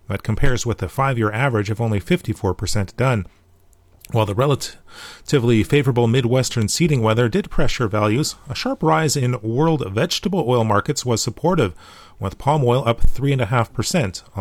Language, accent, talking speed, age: English, American, 145 wpm, 30-49